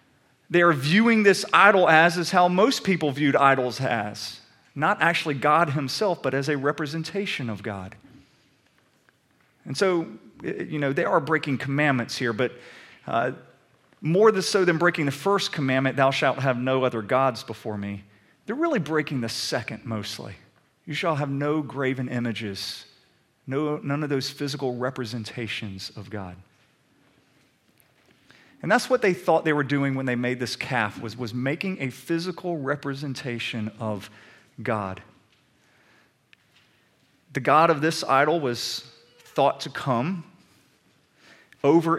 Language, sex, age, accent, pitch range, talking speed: English, male, 40-59, American, 120-165 Hz, 140 wpm